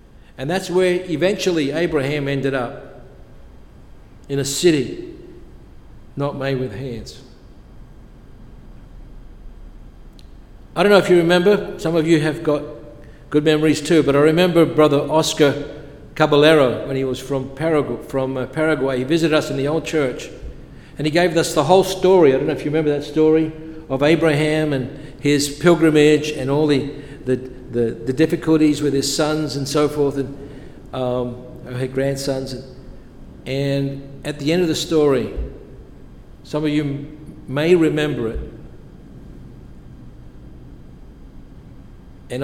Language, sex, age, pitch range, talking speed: English, male, 60-79, 135-155 Hz, 140 wpm